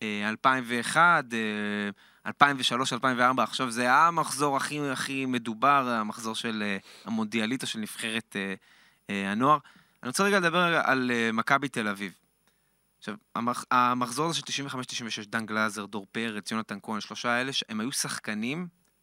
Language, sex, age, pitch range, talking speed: Hebrew, male, 20-39, 120-165 Hz, 130 wpm